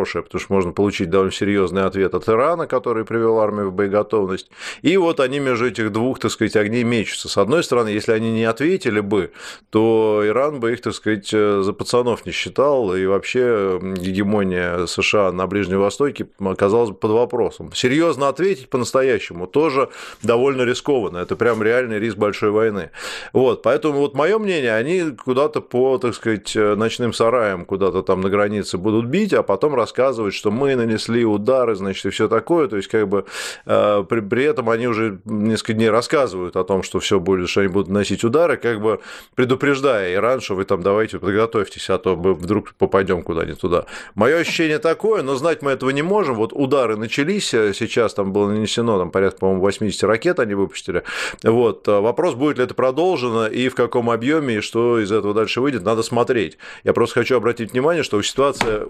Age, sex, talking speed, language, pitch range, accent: 30-49, male, 185 wpm, Russian, 100-125 Hz, native